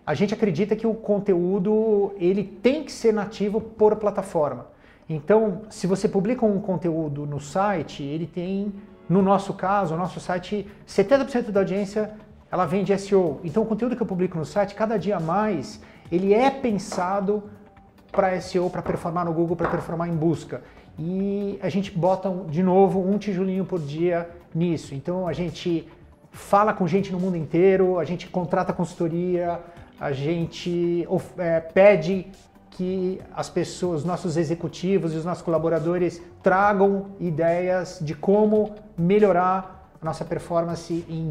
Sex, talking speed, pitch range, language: male, 155 wpm, 170-205 Hz, Portuguese